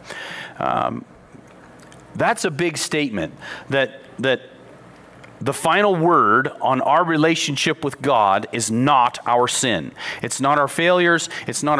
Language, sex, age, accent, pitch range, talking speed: English, male, 40-59, American, 130-160 Hz, 125 wpm